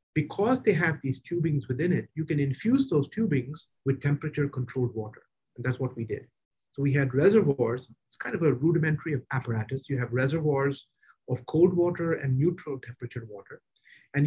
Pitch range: 130-170 Hz